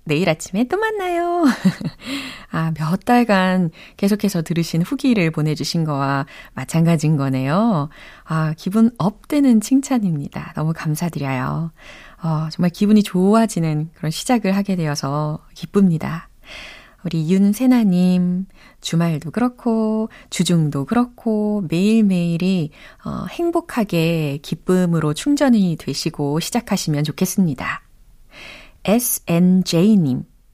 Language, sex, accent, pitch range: Korean, female, native, 160-245 Hz